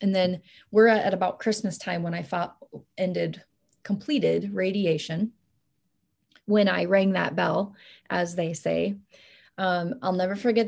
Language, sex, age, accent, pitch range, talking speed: English, female, 30-49, American, 175-210 Hz, 135 wpm